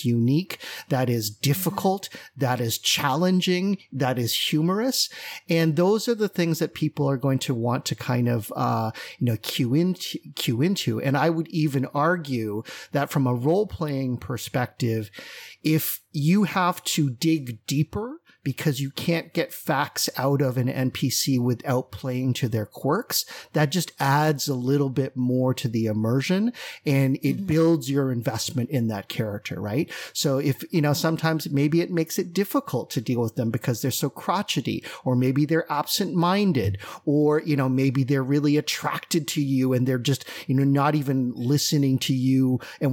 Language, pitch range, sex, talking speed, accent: English, 125-160 Hz, male, 175 wpm, American